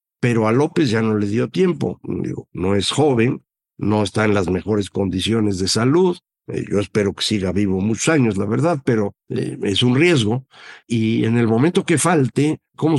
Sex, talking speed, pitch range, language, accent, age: male, 180 wpm, 110-145 Hz, Spanish, Mexican, 60-79